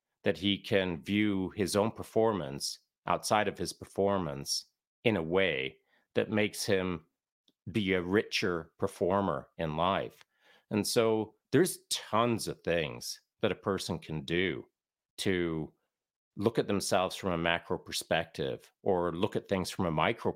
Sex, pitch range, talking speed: male, 90-115 Hz, 145 wpm